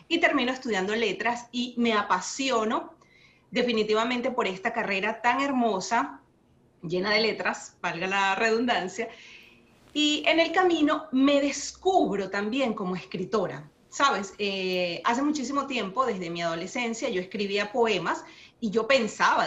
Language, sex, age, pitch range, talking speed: Spanish, female, 30-49, 200-270 Hz, 130 wpm